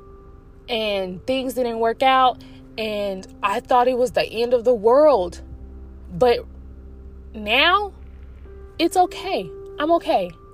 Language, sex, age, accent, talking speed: English, female, 20-39, American, 120 wpm